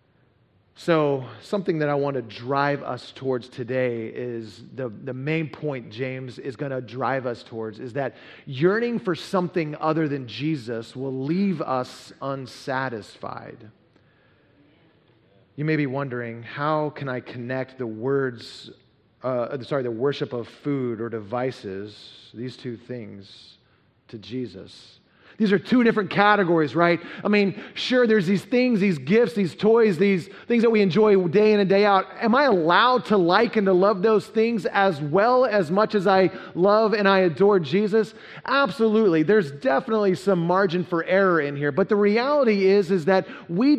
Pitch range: 135-210 Hz